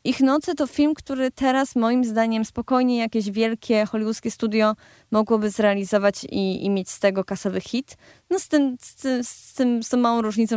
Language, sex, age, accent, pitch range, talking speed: Polish, female, 20-39, native, 195-230 Hz, 170 wpm